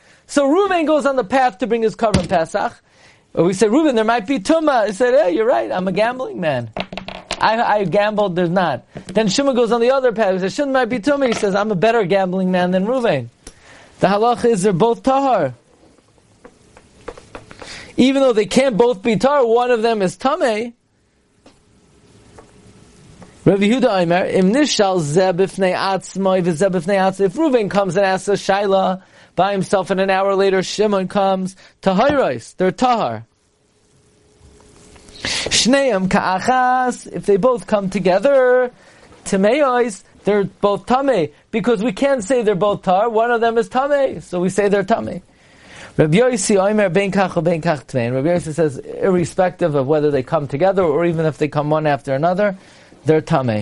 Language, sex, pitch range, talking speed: English, male, 180-240 Hz, 155 wpm